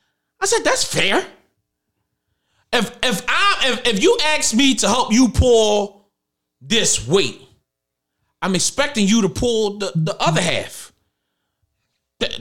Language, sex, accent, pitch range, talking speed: English, male, American, 125-210 Hz, 135 wpm